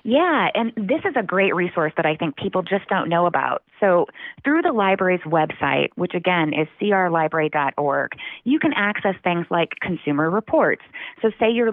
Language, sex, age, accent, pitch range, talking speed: English, female, 20-39, American, 155-190 Hz, 175 wpm